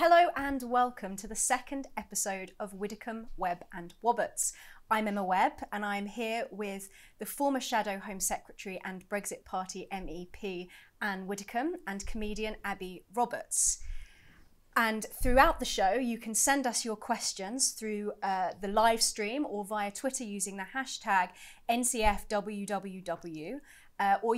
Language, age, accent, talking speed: English, 30-49, British, 140 wpm